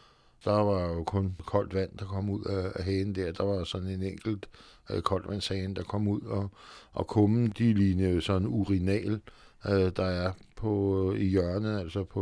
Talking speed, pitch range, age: 185 wpm, 90-105 Hz, 60-79